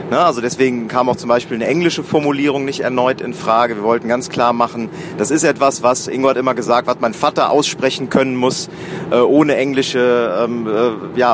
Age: 40-59